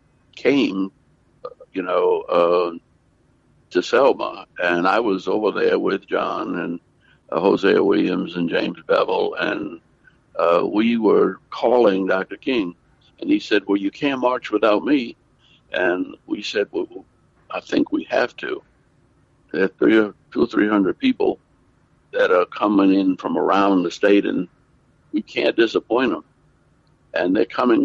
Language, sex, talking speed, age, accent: English, male, 145 wpm, 60-79, American